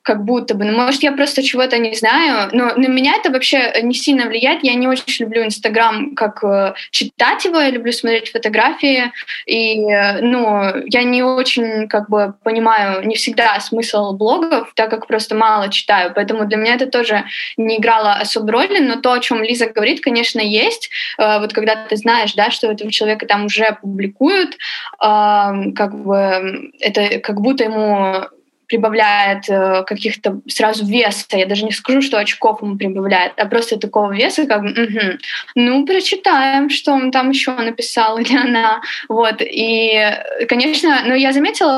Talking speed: 165 wpm